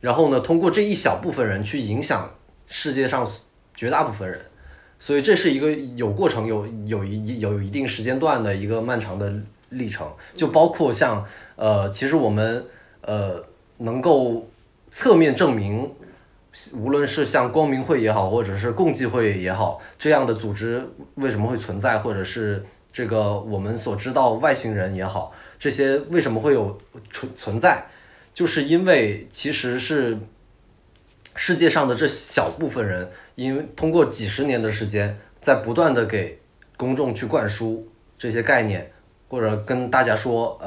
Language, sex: Chinese, male